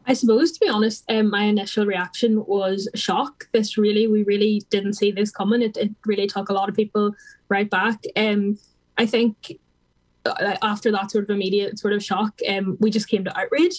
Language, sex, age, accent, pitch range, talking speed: English, female, 10-29, Irish, 200-225 Hz, 200 wpm